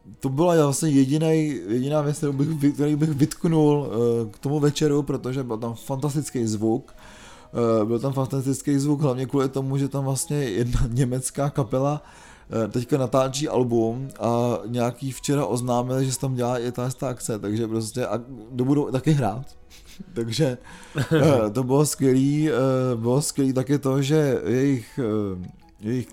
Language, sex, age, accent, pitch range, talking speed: Czech, male, 20-39, native, 120-145 Hz, 140 wpm